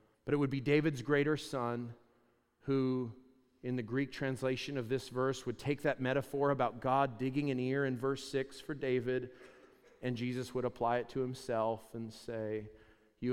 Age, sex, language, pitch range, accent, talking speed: 40-59, male, English, 125-180 Hz, American, 175 wpm